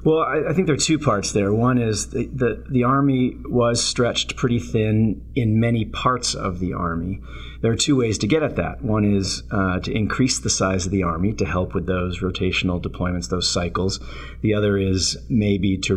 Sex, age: male, 30-49